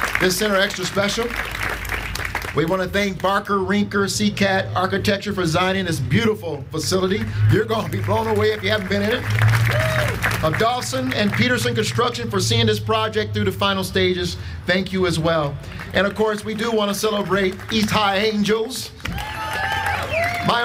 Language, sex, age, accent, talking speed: English, male, 50-69, American, 170 wpm